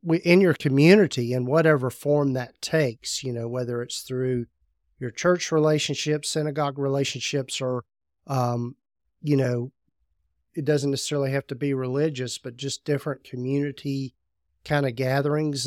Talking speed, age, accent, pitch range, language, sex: 140 wpm, 40-59, American, 125-150 Hz, English, male